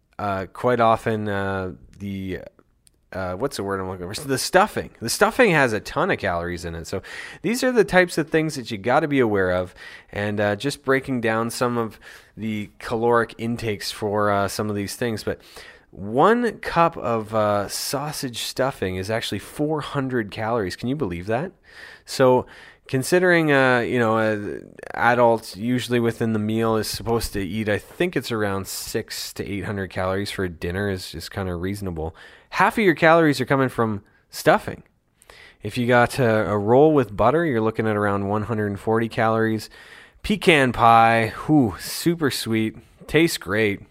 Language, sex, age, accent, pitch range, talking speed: English, male, 20-39, American, 100-130 Hz, 185 wpm